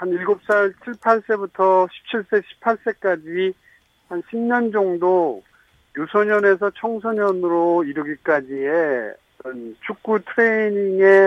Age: 50-69